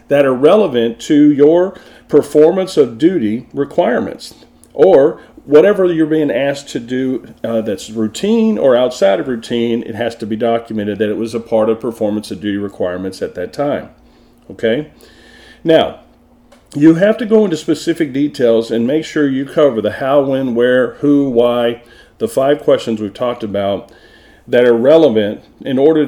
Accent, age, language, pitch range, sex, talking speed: American, 40-59, English, 110-145 Hz, male, 165 wpm